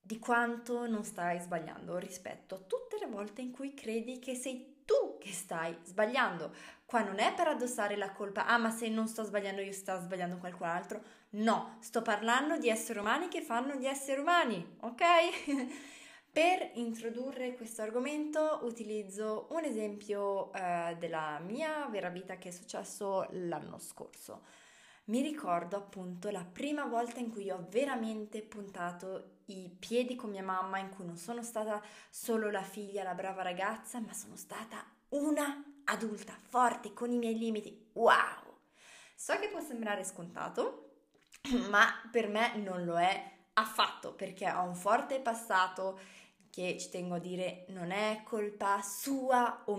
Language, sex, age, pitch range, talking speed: Italian, female, 20-39, 195-240 Hz, 160 wpm